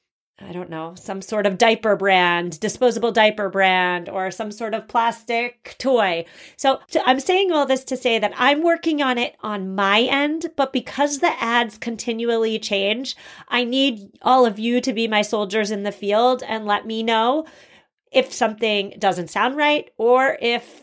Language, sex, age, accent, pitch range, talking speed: English, female, 30-49, American, 210-265 Hz, 180 wpm